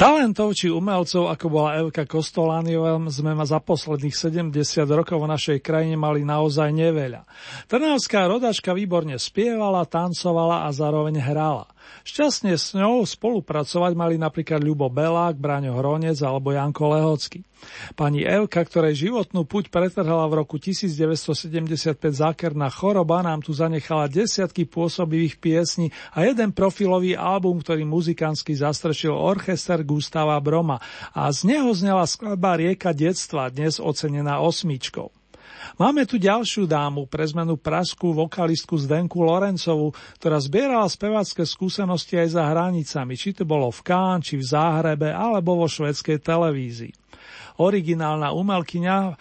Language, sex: Slovak, male